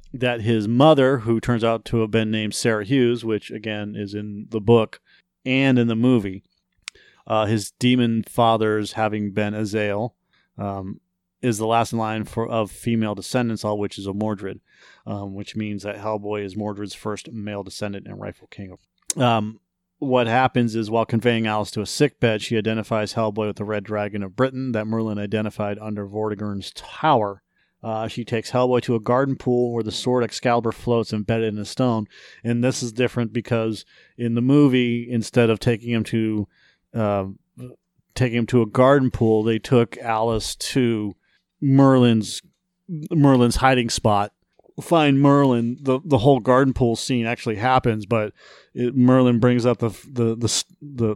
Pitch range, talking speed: 105-125 Hz, 170 wpm